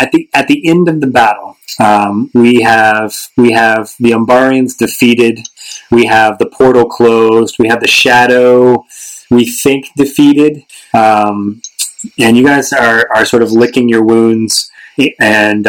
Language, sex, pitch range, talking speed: English, male, 105-120 Hz, 155 wpm